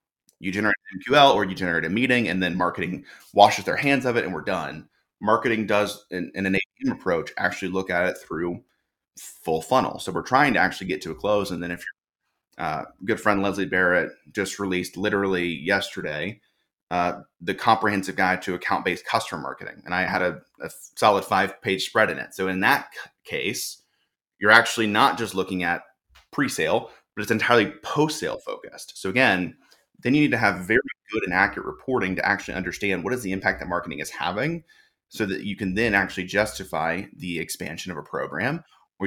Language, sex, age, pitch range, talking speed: English, male, 30-49, 90-110 Hz, 190 wpm